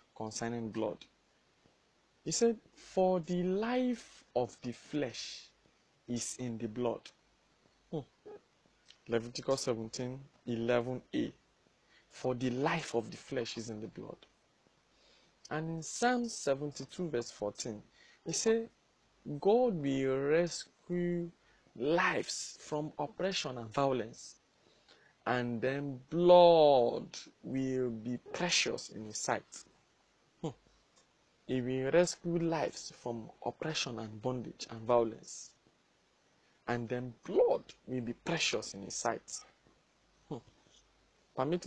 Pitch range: 120-170 Hz